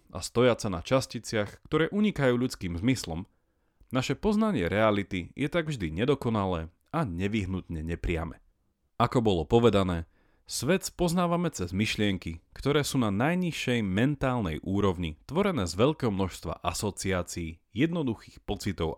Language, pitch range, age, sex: Slovak, 85-125 Hz, 30-49, male